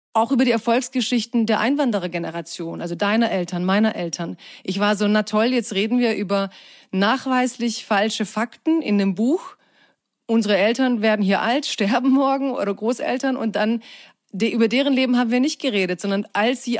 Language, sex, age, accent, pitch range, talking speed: German, female, 30-49, German, 200-245 Hz, 170 wpm